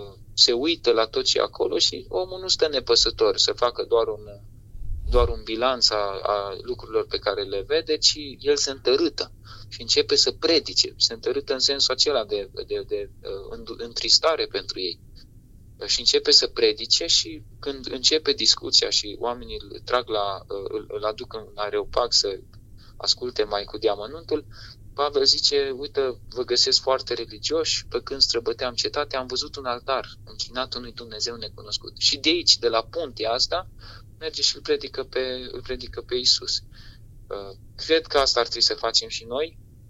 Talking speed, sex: 165 wpm, male